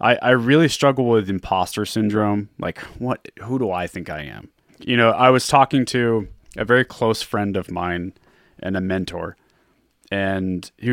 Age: 30-49